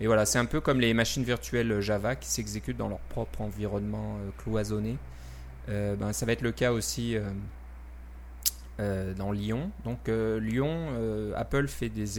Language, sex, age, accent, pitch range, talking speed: French, male, 20-39, French, 100-115 Hz, 180 wpm